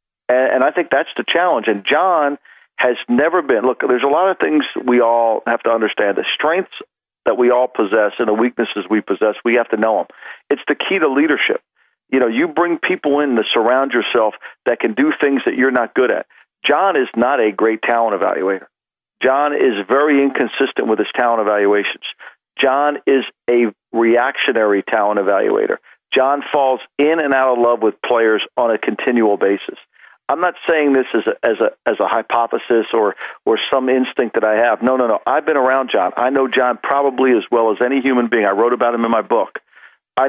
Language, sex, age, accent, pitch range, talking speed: English, male, 50-69, American, 115-135 Hz, 205 wpm